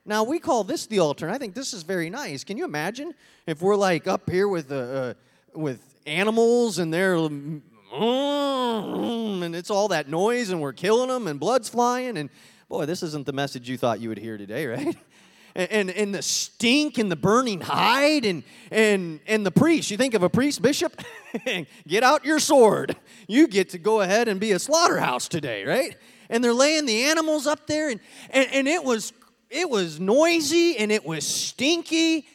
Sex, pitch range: male, 180-265 Hz